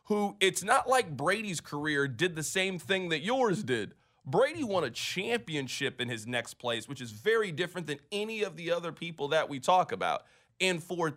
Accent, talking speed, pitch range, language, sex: American, 200 wpm, 145-215 Hz, English, male